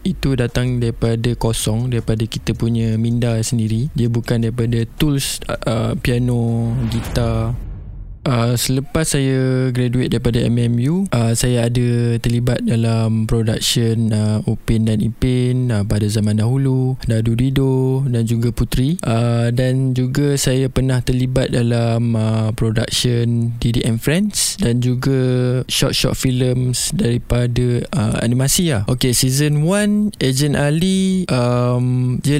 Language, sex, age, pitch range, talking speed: Malay, male, 20-39, 115-130 Hz, 125 wpm